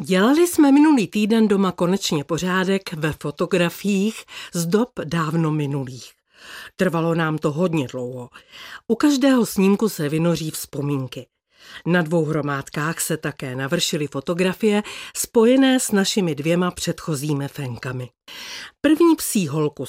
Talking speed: 120 wpm